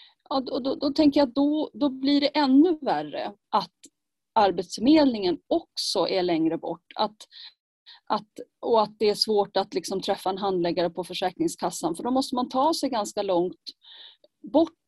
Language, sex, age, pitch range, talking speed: English, female, 30-49, 180-275 Hz, 165 wpm